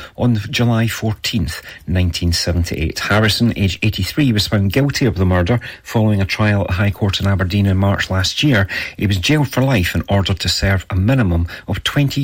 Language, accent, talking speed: English, British, 185 wpm